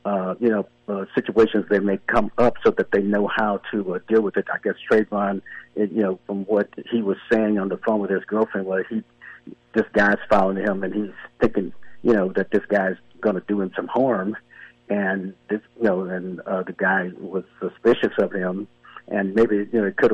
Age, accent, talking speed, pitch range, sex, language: 50-69, American, 220 wpm, 95-110 Hz, male, English